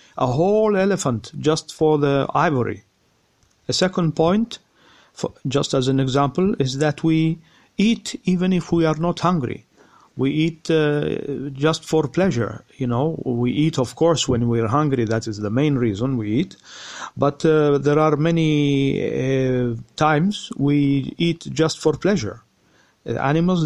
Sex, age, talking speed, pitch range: male, 50-69, 150 wpm, 130-160 Hz